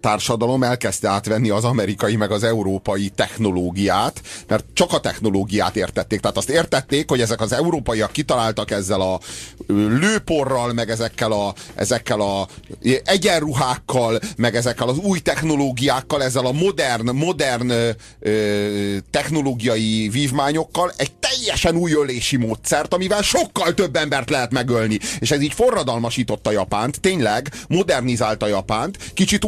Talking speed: 130 wpm